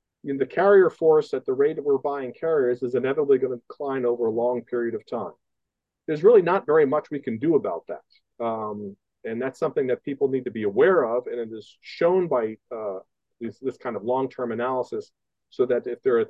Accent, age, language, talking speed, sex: American, 40-59, English, 215 wpm, male